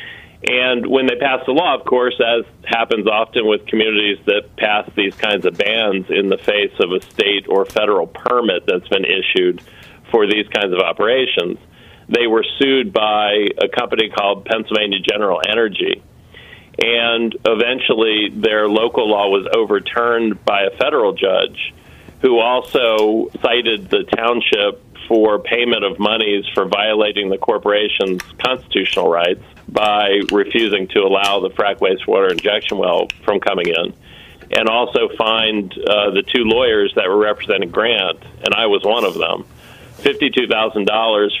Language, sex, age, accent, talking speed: English, male, 40-59, American, 150 wpm